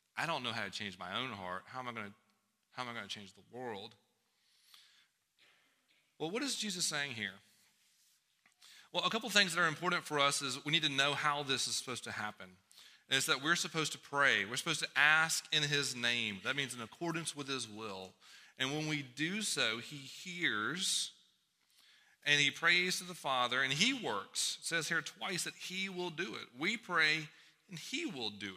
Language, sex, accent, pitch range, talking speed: English, male, American, 105-160 Hz, 200 wpm